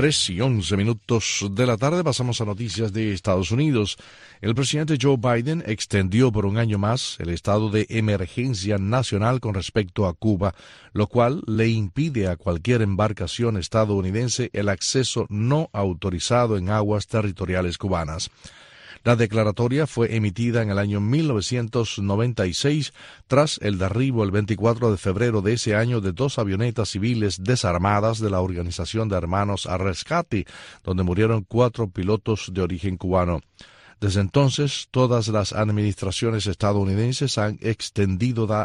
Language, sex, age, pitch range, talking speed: Spanish, male, 40-59, 100-120 Hz, 145 wpm